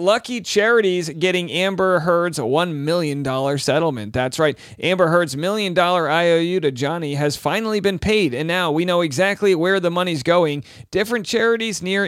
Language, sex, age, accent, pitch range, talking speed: English, male, 40-59, American, 135-185 Hz, 165 wpm